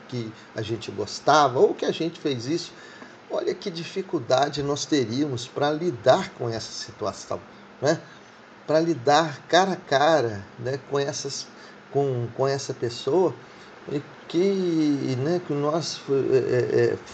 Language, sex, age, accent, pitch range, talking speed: Portuguese, male, 40-59, Brazilian, 125-160 Hz, 140 wpm